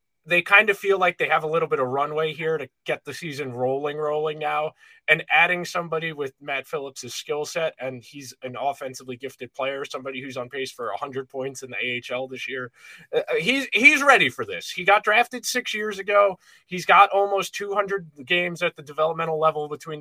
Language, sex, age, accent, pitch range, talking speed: English, male, 20-39, American, 135-200 Hz, 205 wpm